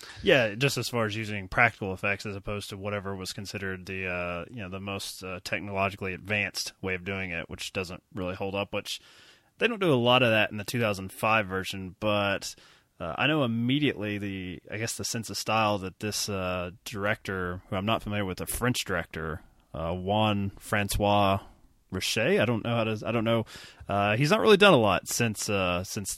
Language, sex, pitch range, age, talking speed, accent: English, male, 95-110 Hz, 20-39, 205 wpm, American